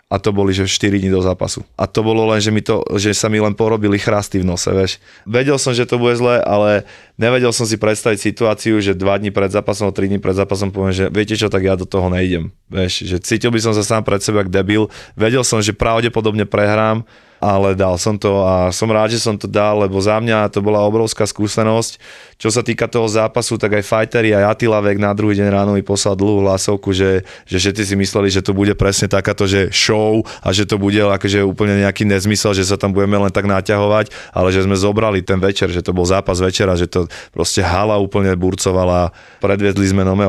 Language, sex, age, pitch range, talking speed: Slovak, male, 20-39, 95-110 Hz, 230 wpm